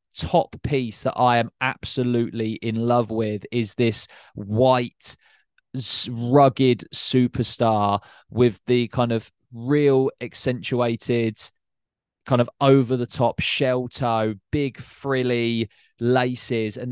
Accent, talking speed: British, 105 wpm